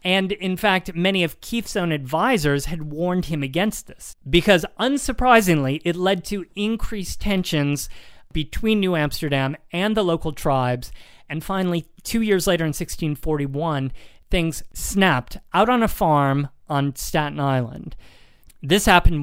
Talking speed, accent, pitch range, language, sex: 140 wpm, American, 140-185 Hz, English, male